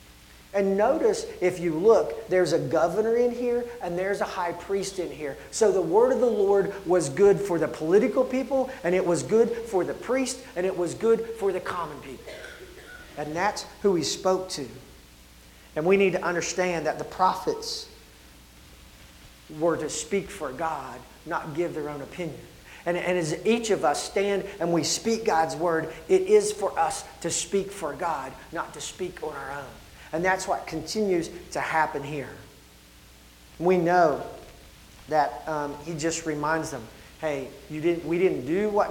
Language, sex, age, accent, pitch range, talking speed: English, male, 40-59, American, 155-195 Hz, 180 wpm